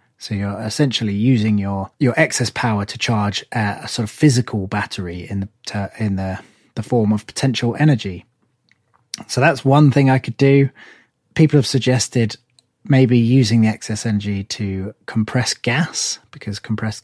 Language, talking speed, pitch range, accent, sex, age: English, 160 wpm, 110-140 Hz, British, male, 20-39